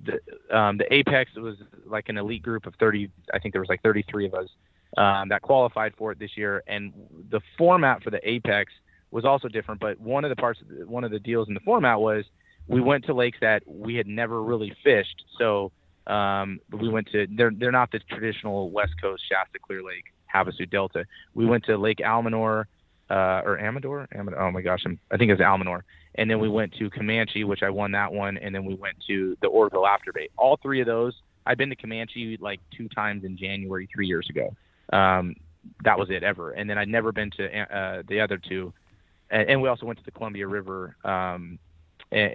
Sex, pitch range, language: male, 95-115 Hz, English